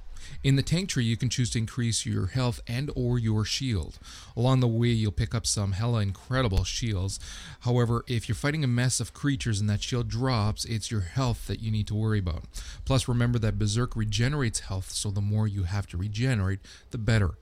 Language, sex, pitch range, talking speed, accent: English, male, 100-125 Hz, 210 wpm, American